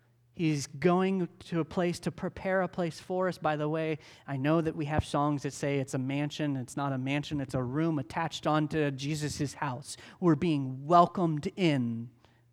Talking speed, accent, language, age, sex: 190 wpm, American, English, 40-59, male